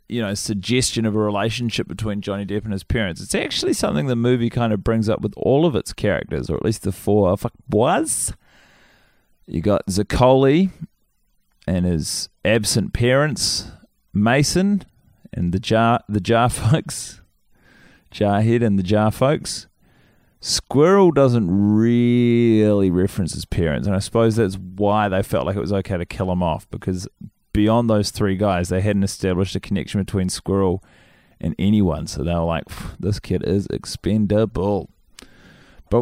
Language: English